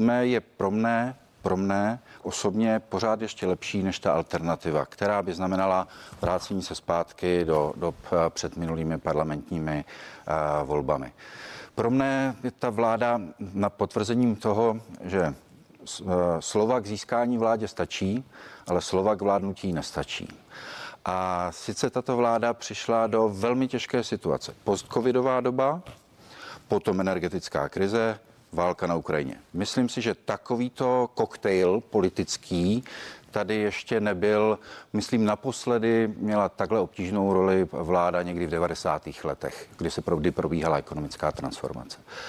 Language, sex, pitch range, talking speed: Czech, male, 90-120 Hz, 125 wpm